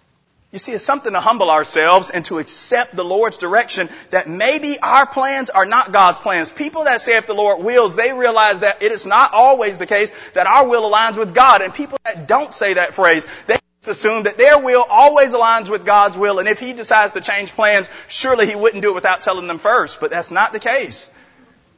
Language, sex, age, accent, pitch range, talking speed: English, male, 30-49, American, 145-225 Hz, 225 wpm